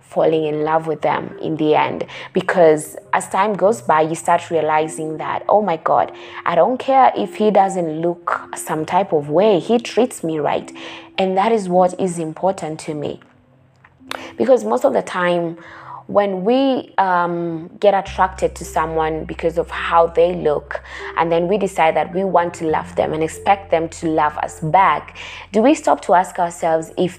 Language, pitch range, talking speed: English, 160-195 Hz, 185 wpm